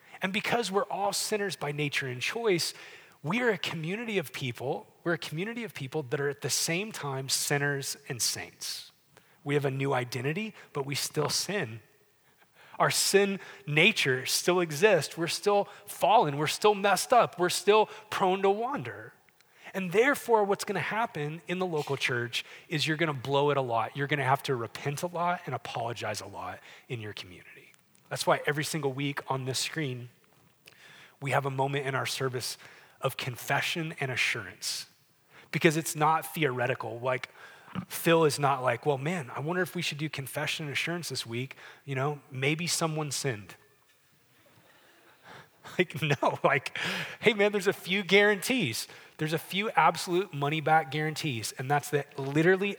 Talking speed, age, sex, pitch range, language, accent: 170 wpm, 30-49, male, 135-180 Hz, English, American